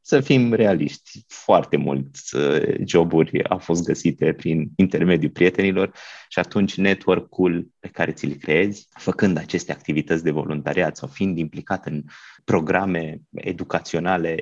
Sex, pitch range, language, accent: male, 80-95 Hz, Romanian, native